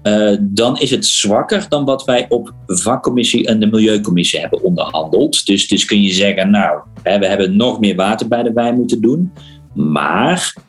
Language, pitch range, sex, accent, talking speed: Dutch, 105-150 Hz, male, Dutch, 180 wpm